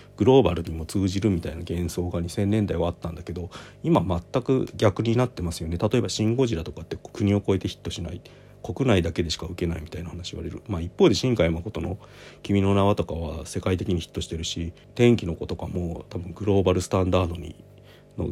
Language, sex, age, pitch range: Japanese, male, 40-59, 85-105 Hz